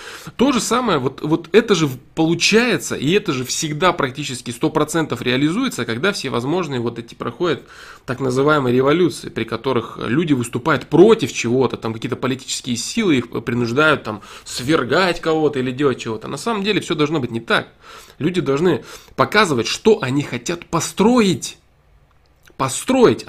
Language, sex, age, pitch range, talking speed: Russian, male, 20-39, 130-190 Hz, 145 wpm